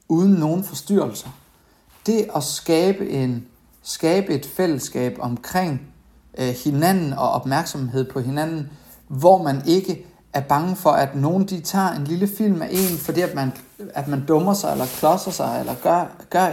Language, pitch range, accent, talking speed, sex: Danish, 145-190 Hz, native, 165 wpm, male